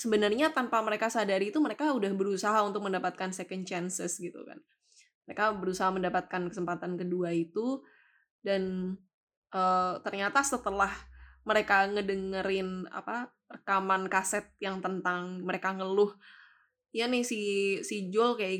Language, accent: Indonesian, native